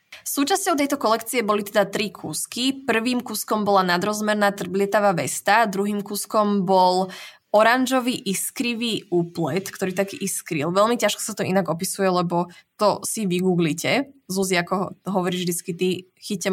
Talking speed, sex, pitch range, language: 135 wpm, female, 185-225 Hz, Slovak